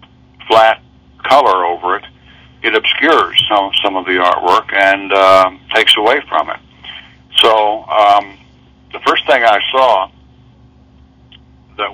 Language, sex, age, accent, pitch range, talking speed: English, male, 60-79, American, 65-100 Hz, 125 wpm